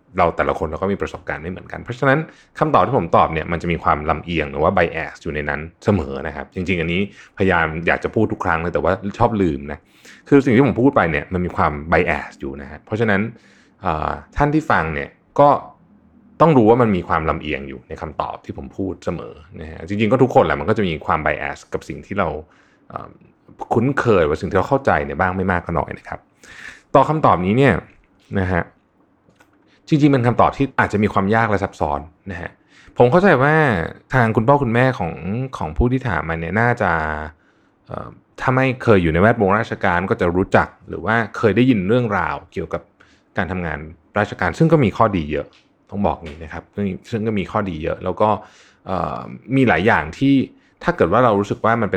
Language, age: Thai, 20-39